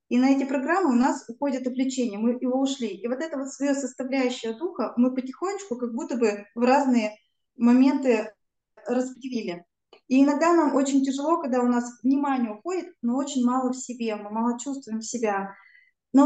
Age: 20-39